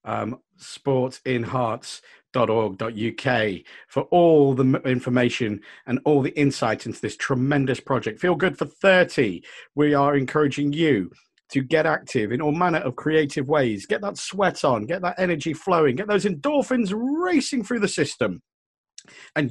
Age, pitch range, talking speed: 40-59, 125-180 Hz, 145 wpm